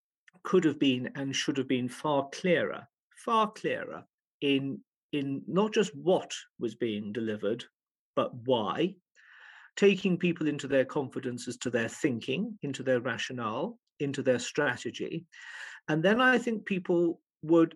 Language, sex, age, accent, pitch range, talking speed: English, male, 50-69, British, 140-195 Hz, 140 wpm